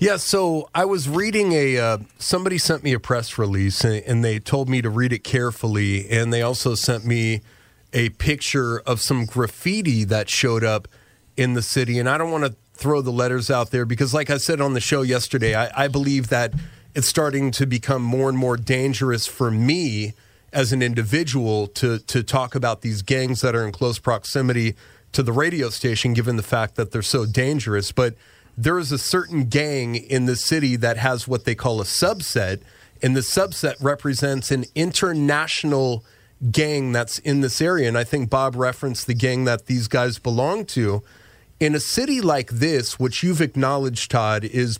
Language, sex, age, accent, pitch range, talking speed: English, male, 30-49, American, 115-140 Hz, 195 wpm